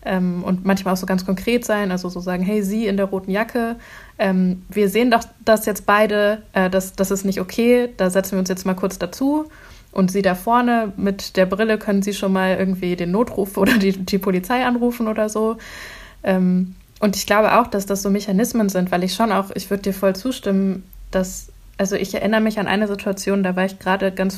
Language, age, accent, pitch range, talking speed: German, 20-39, German, 185-220 Hz, 225 wpm